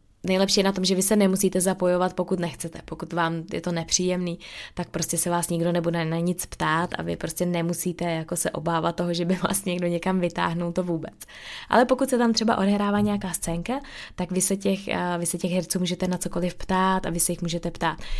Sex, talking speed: female, 220 wpm